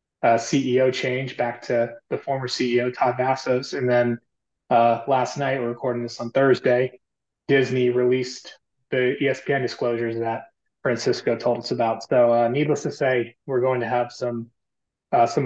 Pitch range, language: 120-130 Hz, English